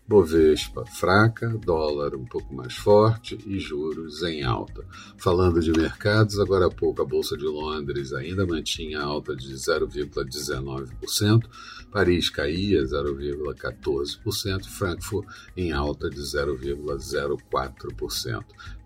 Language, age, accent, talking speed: Portuguese, 50-69, Brazilian, 110 wpm